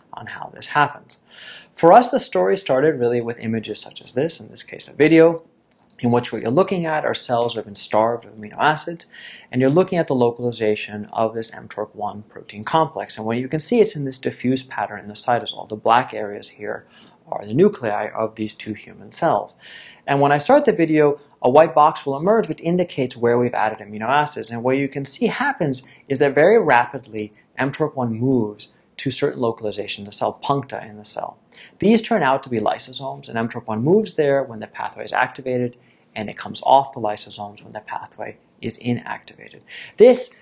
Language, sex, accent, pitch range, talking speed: English, male, American, 110-150 Hz, 205 wpm